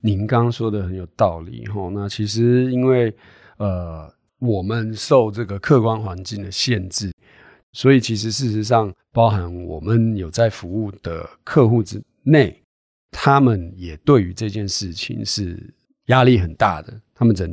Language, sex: Chinese, male